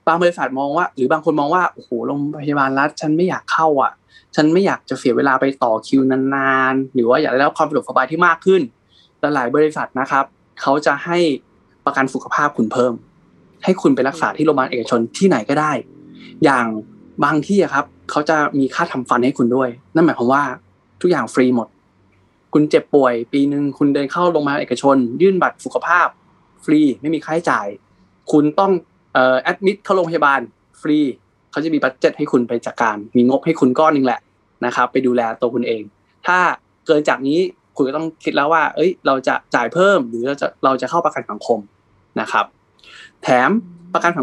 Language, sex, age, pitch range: Thai, male, 20-39, 125-165 Hz